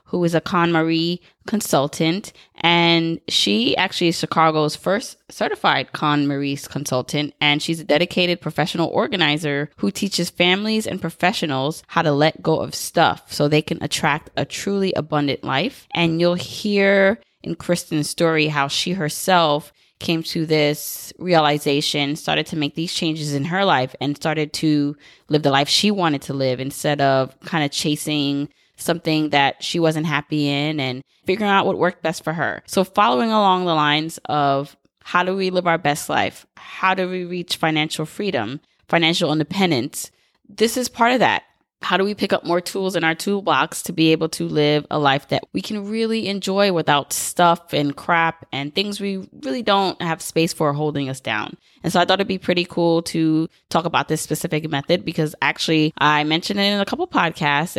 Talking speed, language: 185 wpm, English